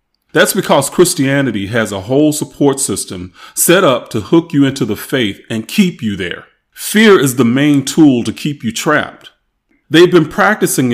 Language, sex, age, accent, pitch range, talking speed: English, male, 30-49, American, 125-170 Hz, 175 wpm